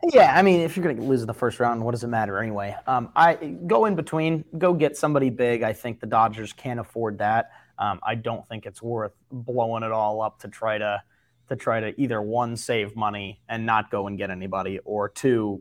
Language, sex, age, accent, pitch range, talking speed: English, male, 30-49, American, 105-135 Hz, 235 wpm